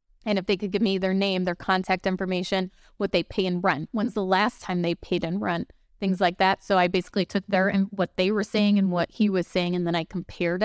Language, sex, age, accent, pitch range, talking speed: English, female, 20-39, American, 180-205 Hz, 260 wpm